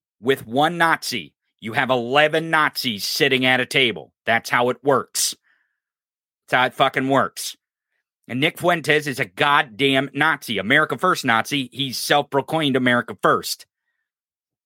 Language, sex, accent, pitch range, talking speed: English, male, American, 135-165 Hz, 140 wpm